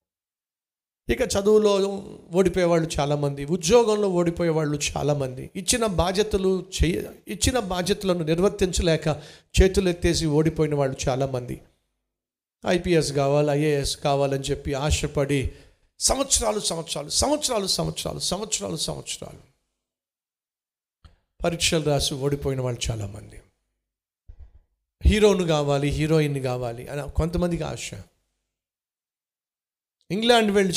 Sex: male